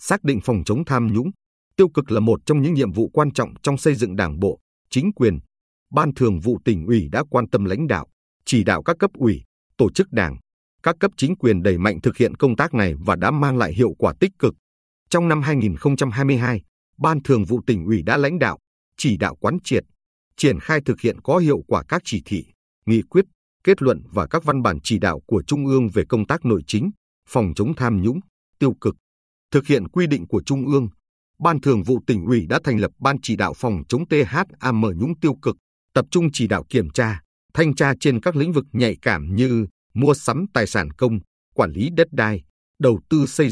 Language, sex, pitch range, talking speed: Vietnamese, male, 105-150 Hz, 220 wpm